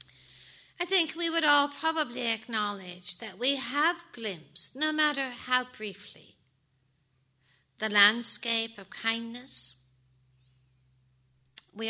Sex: female